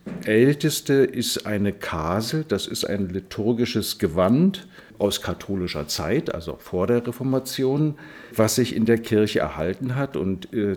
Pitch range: 100-120 Hz